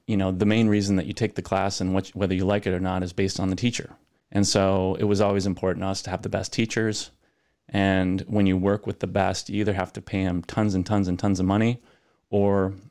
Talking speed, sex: 260 wpm, male